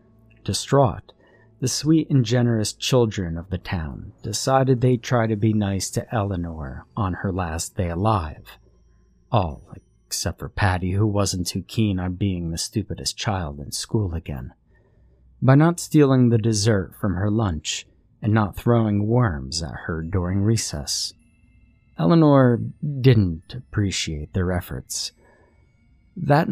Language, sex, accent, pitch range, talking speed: English, male, American, 90-120 Hz, 135 wpm